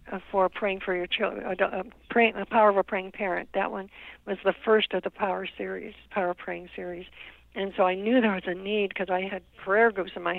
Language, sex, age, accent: English, female, 60-79, American